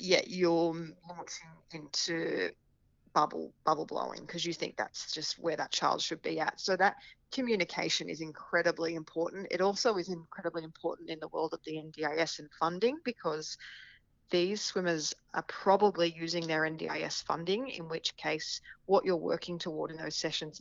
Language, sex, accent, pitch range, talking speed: English, female, Australian, 160-180 Hz, 165 wpm